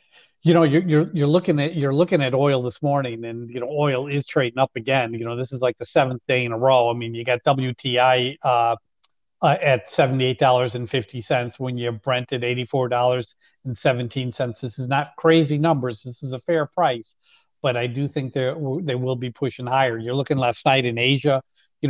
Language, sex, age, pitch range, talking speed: English, male, 40-59, 125-150 Hz, 225 wpm